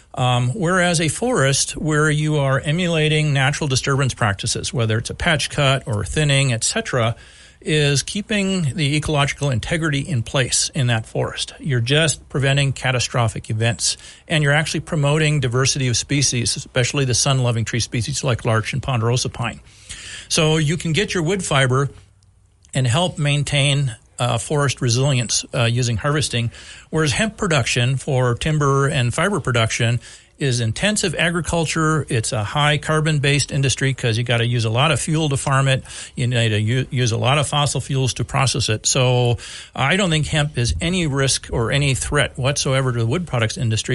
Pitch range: 120-150 Hz